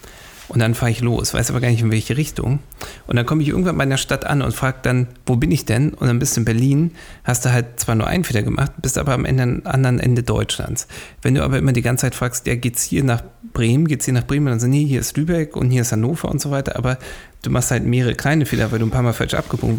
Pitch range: 120-150 Hz